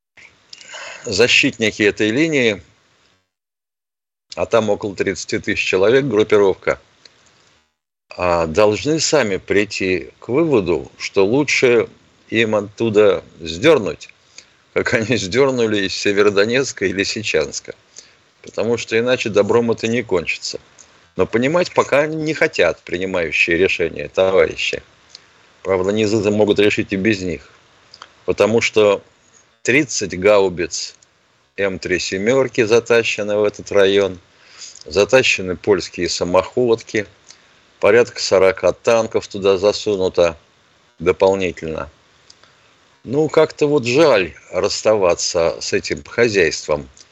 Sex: male